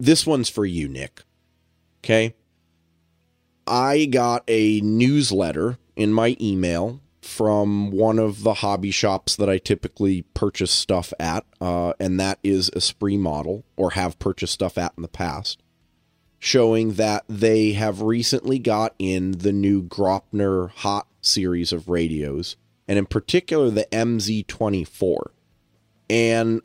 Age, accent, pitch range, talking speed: 30-49, American, 90-110 Hz, 135 wpm